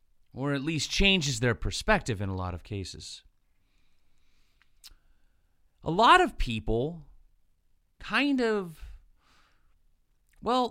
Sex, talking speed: male, 100 wpm